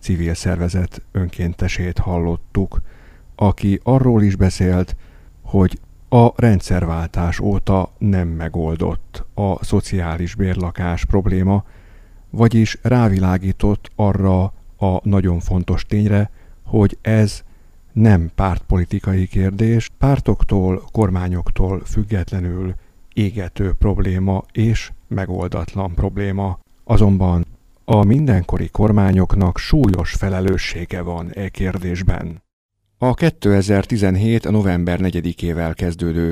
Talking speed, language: 85 wpm, Hungarian